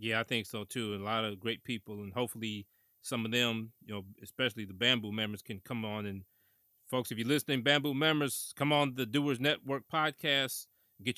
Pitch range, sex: 110-135 Hz, male